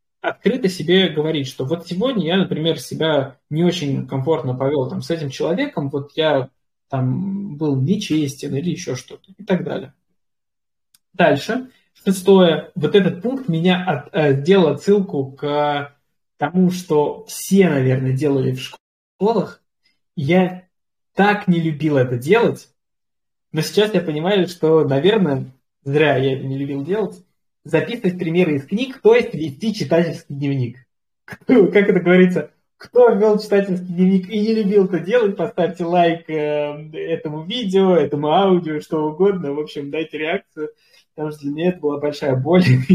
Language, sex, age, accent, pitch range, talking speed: Russian, male, 20-39, native, 145-190 Hz, 145 wpm